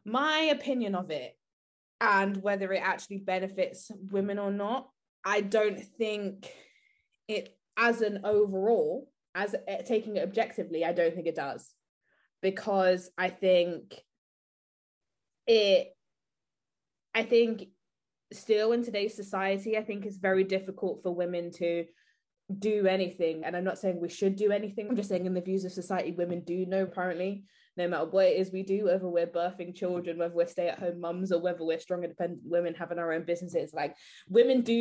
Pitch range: 175-205 Hz